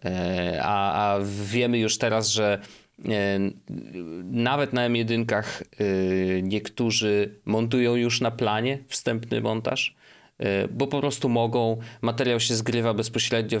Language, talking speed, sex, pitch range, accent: Polish, 105 wpm, male, 105-125 Hz, native